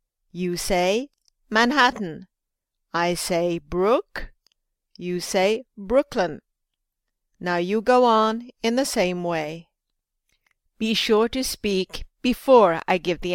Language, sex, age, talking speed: English, female, 50-69, 110 wpm